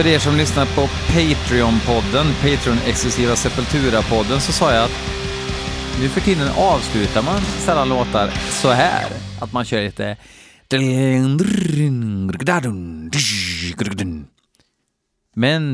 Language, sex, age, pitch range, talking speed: Swedish, male, 30-49, 105-140 Hz, 100 wpm